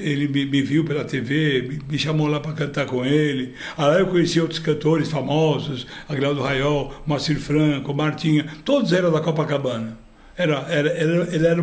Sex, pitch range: male, 155-215 Hz